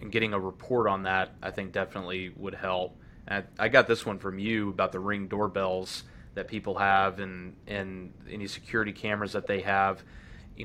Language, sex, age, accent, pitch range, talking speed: English, male, 20-39, American, 95-110 Hz, 190 wpm